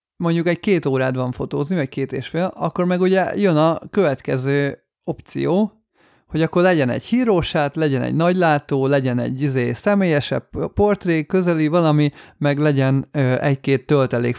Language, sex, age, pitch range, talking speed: Hungarian, male, 30-49, 135-170 Hz, 145 wpm